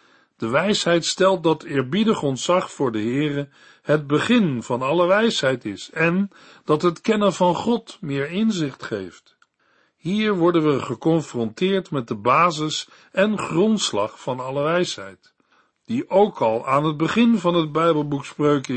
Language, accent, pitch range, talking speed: Dutch, Dutch, 135-185 Hz, 145 wpm